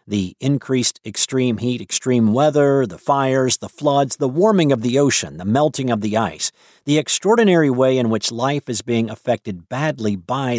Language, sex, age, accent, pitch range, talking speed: English, male, 50-69, American, 110-140 Hz, 175 wpm